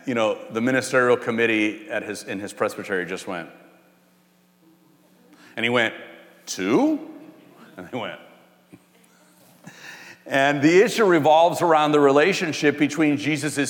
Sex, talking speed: male, 125 wpm